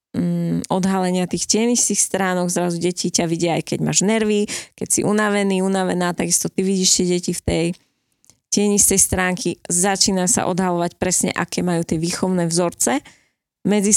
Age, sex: 20-39, female